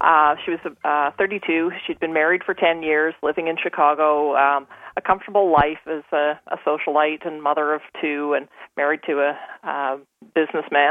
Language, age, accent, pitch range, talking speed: English, 40-59, American, 150-180 Hz, 175 wpm